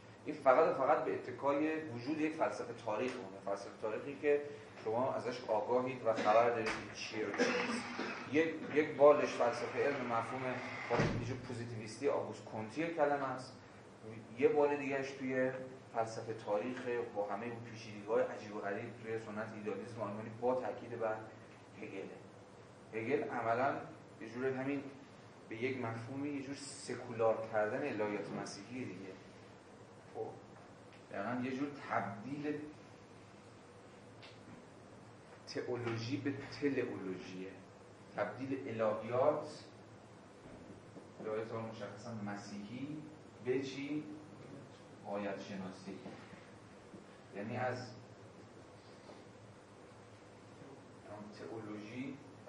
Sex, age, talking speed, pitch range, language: male, 30-49, 95 wpm, 105-130 Hz, Persian